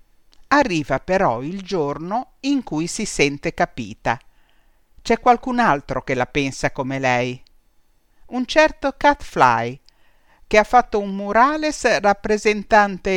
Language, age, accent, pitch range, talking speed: Italian, 50-69, native, 145-220 Hz, 120 wpm